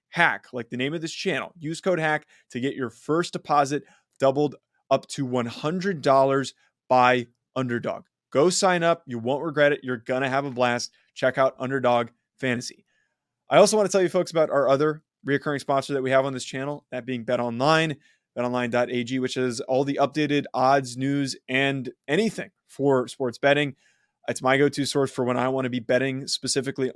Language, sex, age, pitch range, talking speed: English, male, 20-39, 125-145 Hz, 185 wpm